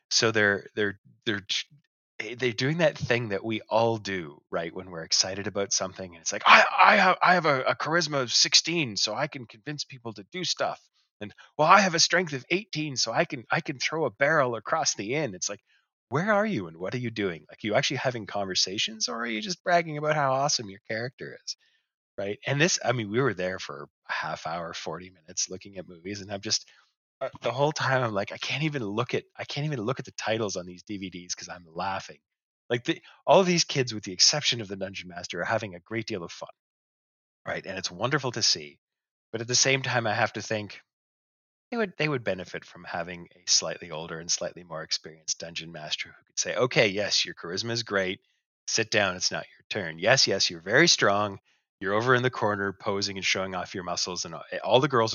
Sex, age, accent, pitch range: male, 20-39, American, 95-135 Hz